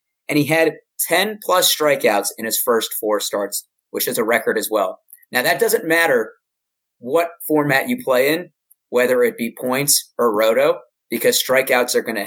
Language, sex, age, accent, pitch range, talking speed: English, male, 30-49, American, 120-170 Hz, 175 wpm